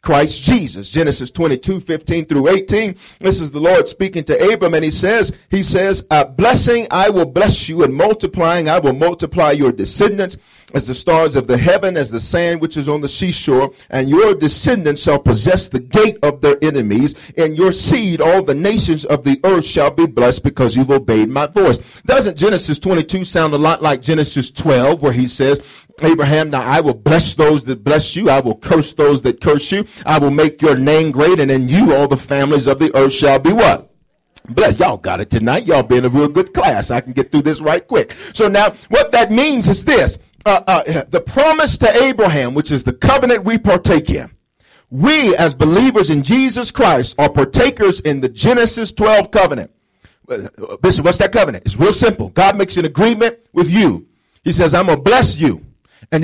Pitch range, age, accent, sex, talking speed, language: 145-195 Hz, 40-59, American, male, 205 wpm, English